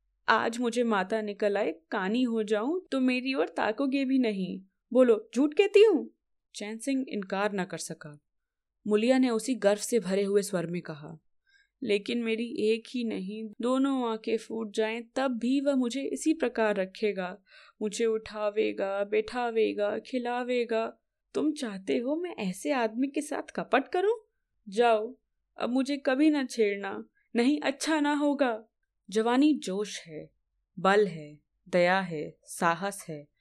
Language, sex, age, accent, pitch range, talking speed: Hindi, female, 20-39, native, 185-245 Hz, 150 wpm